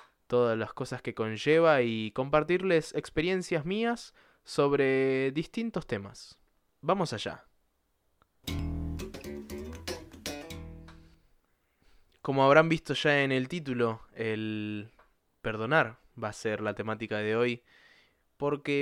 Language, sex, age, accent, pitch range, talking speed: Portuguese, male, 20-39, Argentinian, 110-155 Hz, 100 wpm